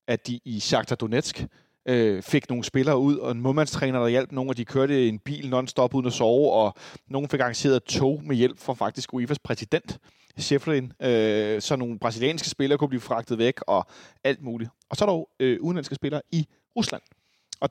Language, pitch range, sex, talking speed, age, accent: Danish, 120-150 Hz, male, 195 wpm, 30-49, native